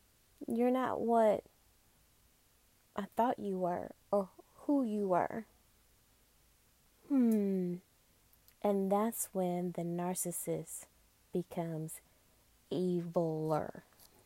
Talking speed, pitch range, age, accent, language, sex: 80 wpm, 180-220 Hz, 20-39, American, English, female